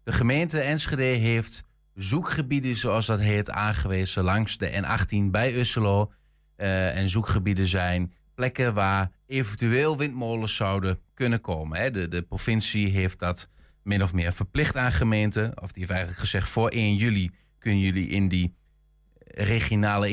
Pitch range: 95-115 Hz